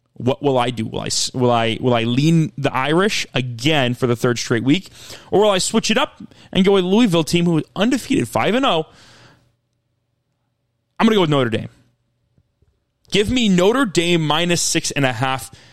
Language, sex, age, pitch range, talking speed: English, male, 30-49, 120-160 Hz, 200 wpm